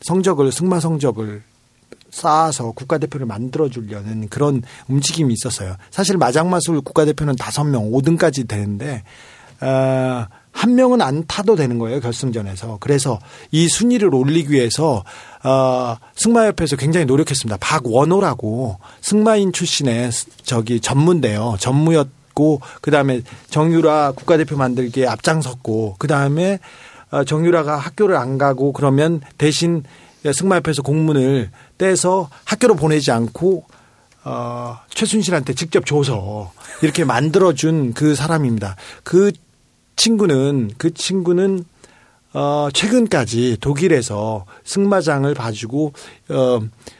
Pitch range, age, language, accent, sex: 125-165 Hz, 40-59, Korean, native, male